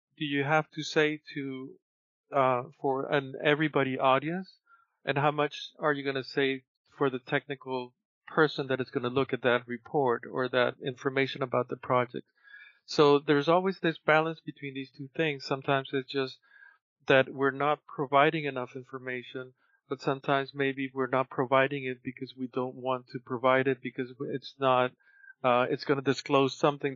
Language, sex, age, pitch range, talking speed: English, male, 40-59, 130-145 Hz, 170 wpm